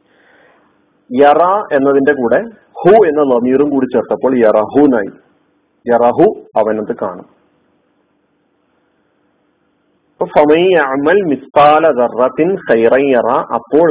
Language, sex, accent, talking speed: Malayalam, male, native, 60 wpm